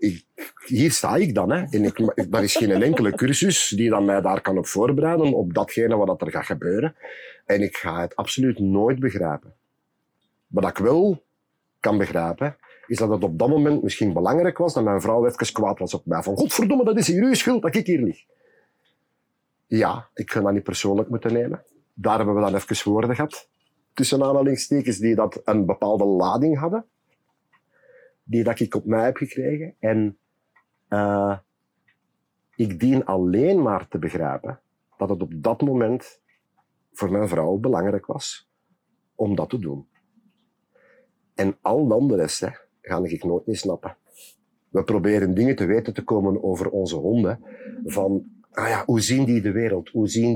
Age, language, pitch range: 40-59, Dutch, 100-160 Hz